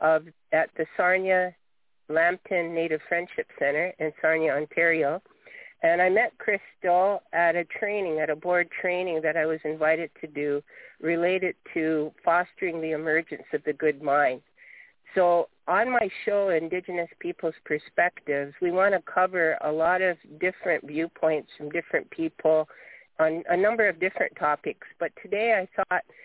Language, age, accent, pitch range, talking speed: English, 50-69, American, 160-200 Hz, 145 wpm